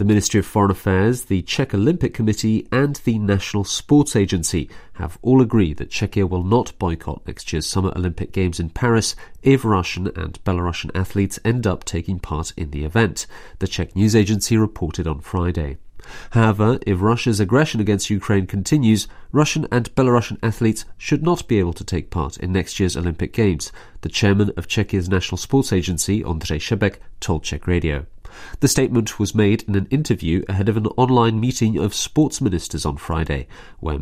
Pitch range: 90-115 Hz